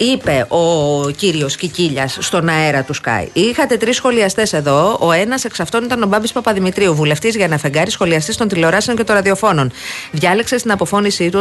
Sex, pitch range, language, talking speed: female, 170-230 Hz, Greek, 175 wpm